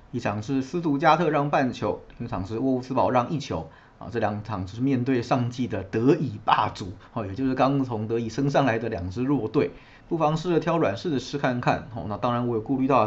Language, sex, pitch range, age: Chinese, male, 110-135 Hz, 30-49